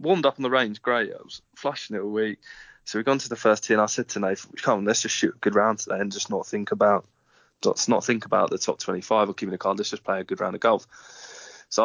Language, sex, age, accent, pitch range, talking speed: English, male, 20-39, British, 100-120 Hz, 295 wpm